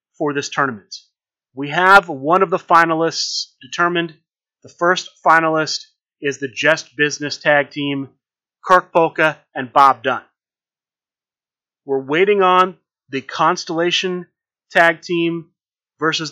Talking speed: 120 wpm